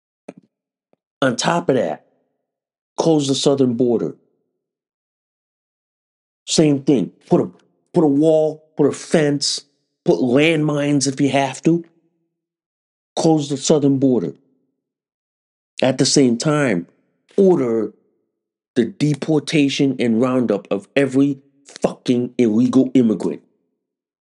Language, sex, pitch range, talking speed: English, male, 120-165 Hz, 105 wpm